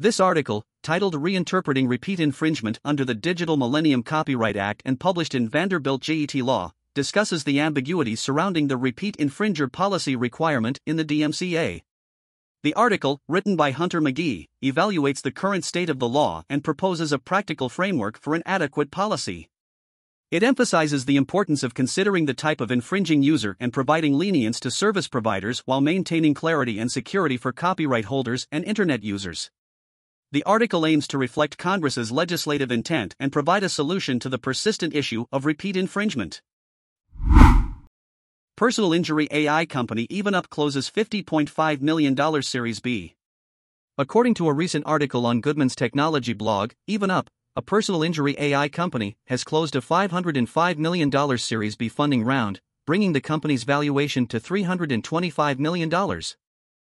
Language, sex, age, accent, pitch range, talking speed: English, male, 50-69, American, 125-165 Hz, 150 wpm